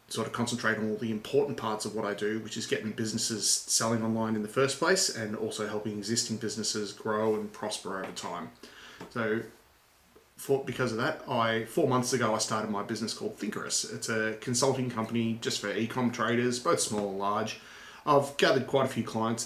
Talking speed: 200 wpm